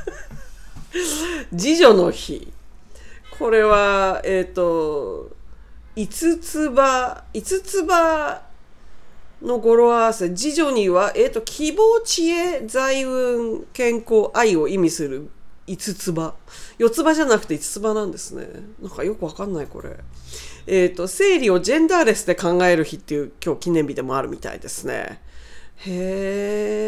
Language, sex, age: Japanese, female, 40-59